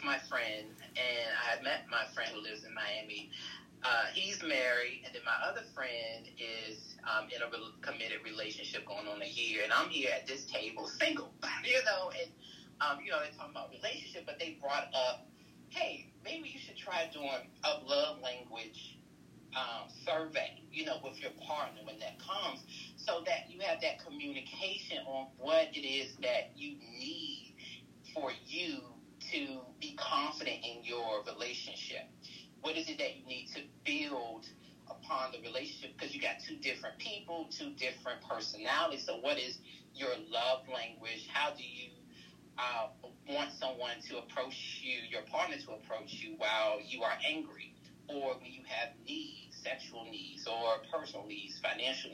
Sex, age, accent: male, 30-49, American